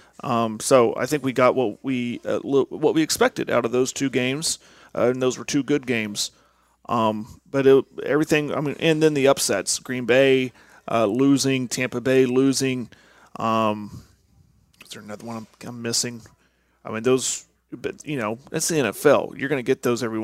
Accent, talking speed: American, 190 wpm